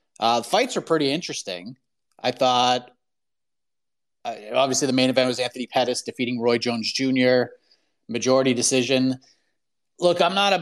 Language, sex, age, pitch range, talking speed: English, male, 30-49, 125-155 Hz, 145 wpm